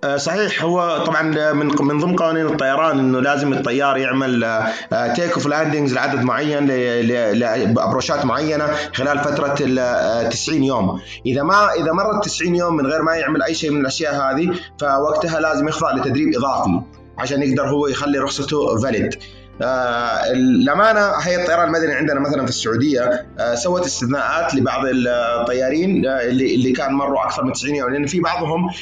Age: 30-49